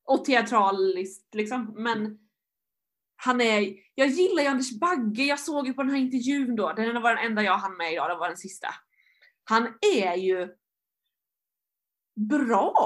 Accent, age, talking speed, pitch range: native, 20-39, 165 wpm, 210-305 Hz